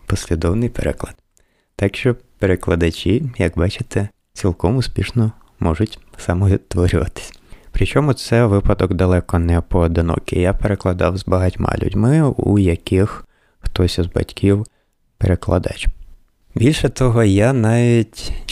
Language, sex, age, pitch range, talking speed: Ukrainian, male, 20-39, 85-105 Hz, 105 wpm